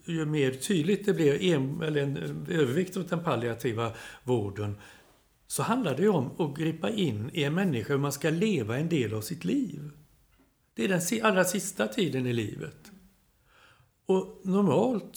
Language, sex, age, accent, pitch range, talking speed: Swedish, male, 60-79, native, 140-185 Hz, 160 wpm